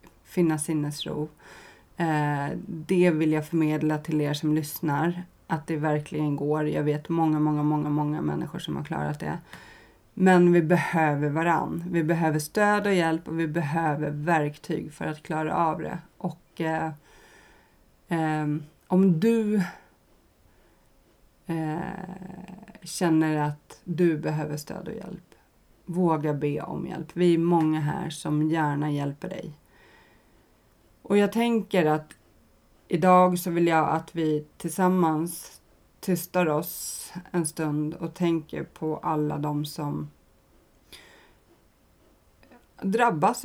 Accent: native